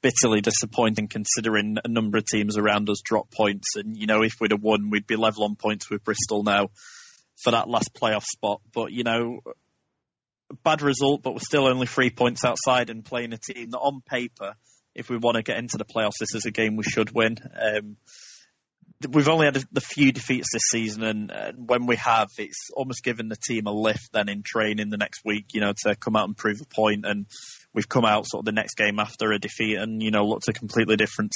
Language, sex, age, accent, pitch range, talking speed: English, male, 20-39, British, 105-120 Hz, 230 wpm